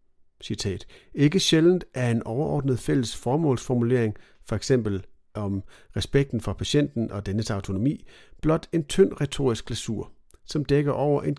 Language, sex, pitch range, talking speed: Danish, male, 110-145 Hz, 135 wpm